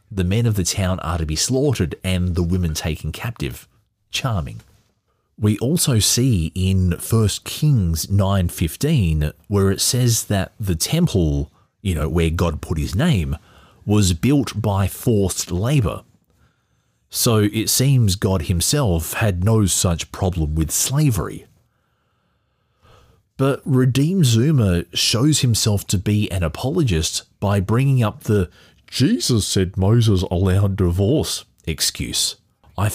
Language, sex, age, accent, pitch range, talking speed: English, male, 30-49, Australian, 90-115 Hz, 130 wpm